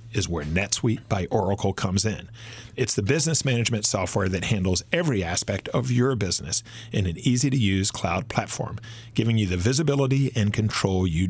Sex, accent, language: male, American, English